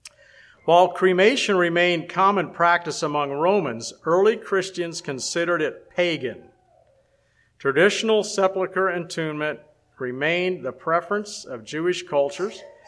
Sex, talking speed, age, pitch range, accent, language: male, 100 wpm, 50-69, 145-185 Hz, American, English